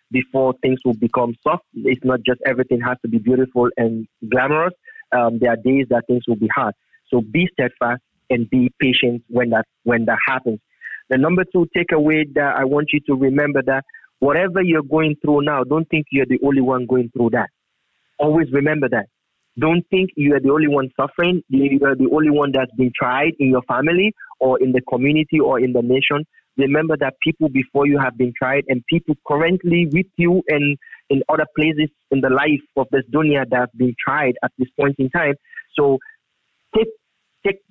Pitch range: 130-155 Hz